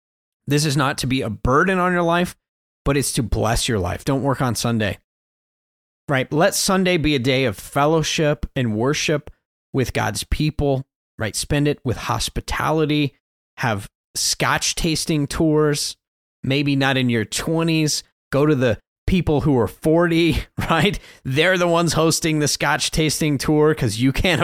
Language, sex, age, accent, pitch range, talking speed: English, male, 30-49, American, 115-150 Hz, 160 wpm